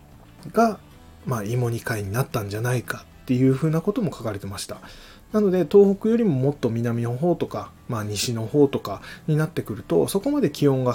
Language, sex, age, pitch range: Japanese, male, 20-39, 105-145 Hz